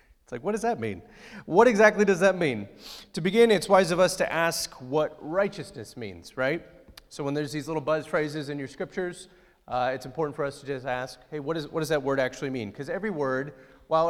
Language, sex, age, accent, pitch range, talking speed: English, male, 30-49, American, 120-160 Hz, 220 wpm